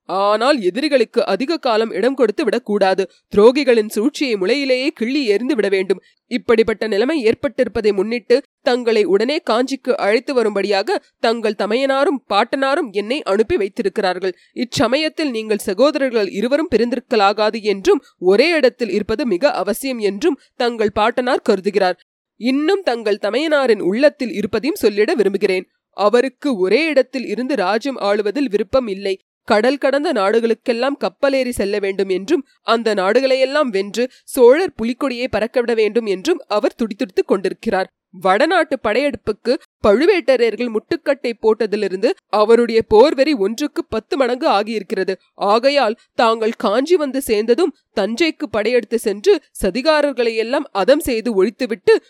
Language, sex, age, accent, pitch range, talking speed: Tamil, female, 20-39, native, 210-285 Hz, 115 wpm